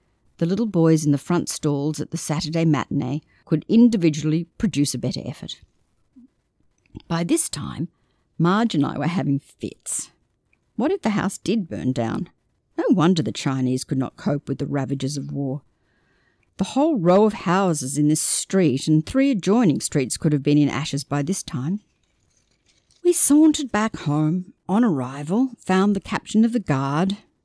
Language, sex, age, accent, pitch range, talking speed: English, female, 50-69, Australian, 145-195 Hz, 170 wpm